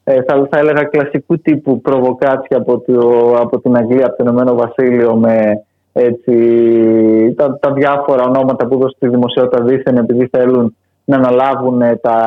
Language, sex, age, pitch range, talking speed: Greek, male, 20-39, 125-165 Hz, 150 wpm